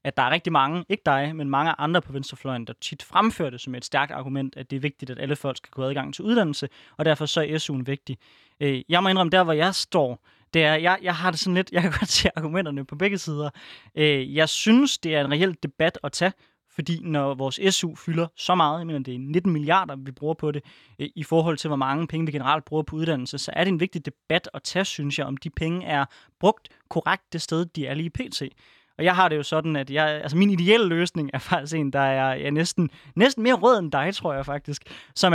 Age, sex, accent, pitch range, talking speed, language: 20-39, male, native, 145-185 Hz, 250 wpm, Danish